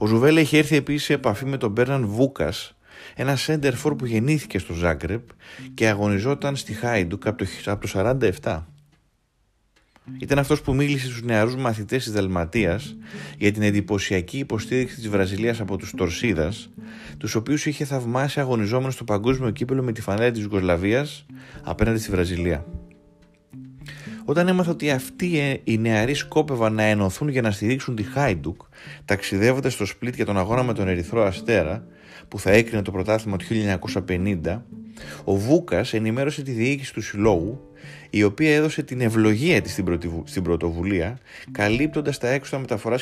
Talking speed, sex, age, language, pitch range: 155 wpm, male, 30-49, Greek, 100-135 Hz